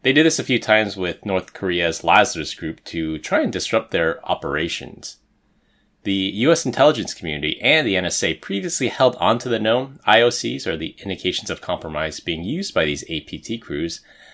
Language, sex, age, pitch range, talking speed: English, male, 30-49, 80-110 Hz, 170 wpm